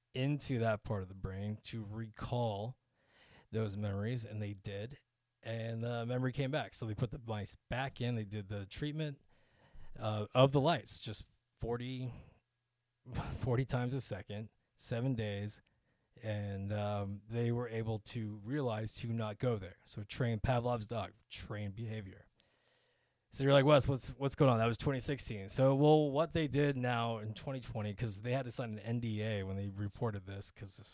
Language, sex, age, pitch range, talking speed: English, male, 20-39, 105-130 Hz, 175 wpm